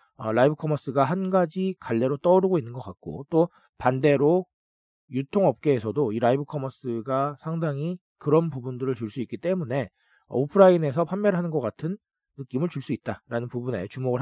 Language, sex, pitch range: Korean, male, 125-180 Hz